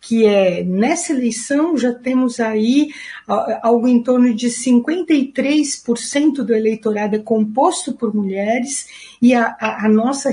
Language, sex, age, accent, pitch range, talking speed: Portuguese, female, 50-69, Brazilian, 195-255 Hz, 135 wpm